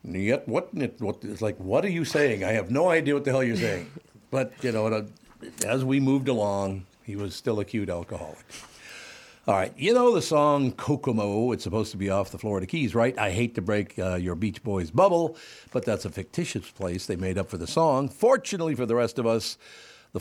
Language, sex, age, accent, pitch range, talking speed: English, male, 60-79, American, 100-130 Hz, 225 wpm